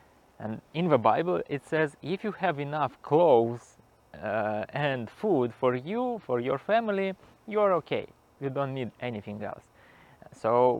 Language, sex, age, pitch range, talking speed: English, male, 20-39, 105-140 Hz, 150 wpm